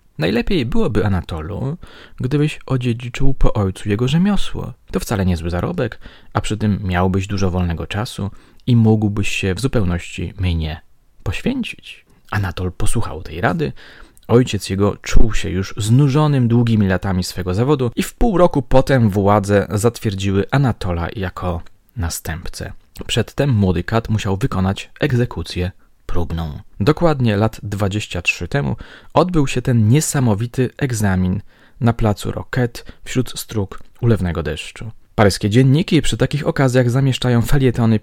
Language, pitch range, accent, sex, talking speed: Polish, 95-125 Hz, native, male, 130 wpm